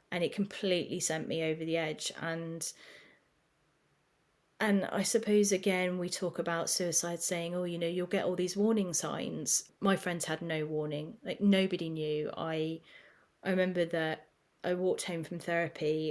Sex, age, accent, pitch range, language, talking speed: female, 30-49, British, 160-190 Hz, English, 165 wpm